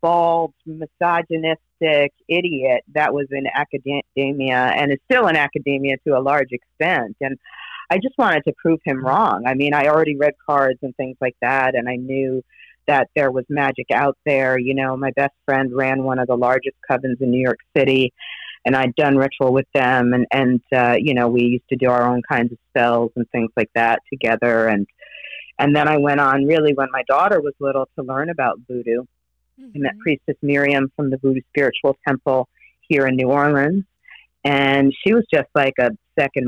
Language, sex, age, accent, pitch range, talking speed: English, female, 40-59, American, 125-140 Hz, 195 wpm